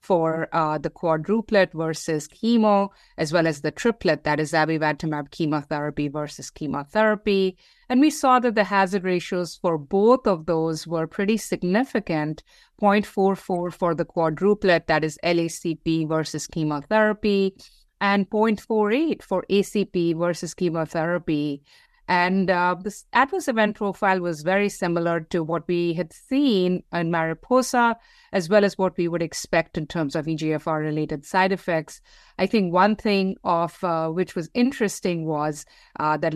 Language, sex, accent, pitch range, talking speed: English, female, Indian, 160-195 Hz, 145 wpm